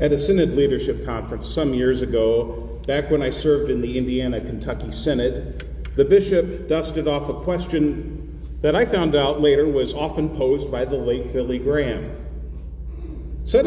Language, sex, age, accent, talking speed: English, male, 40-59, American, 165 wpm